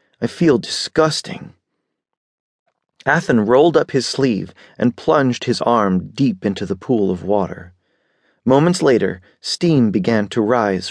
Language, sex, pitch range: English, male, 95-120 Hz